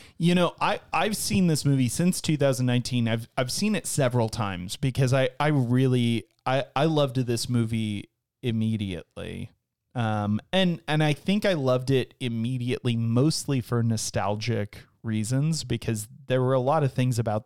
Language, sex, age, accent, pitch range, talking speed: English, male, 30-49, American, 110-130 Hz, 160 wpm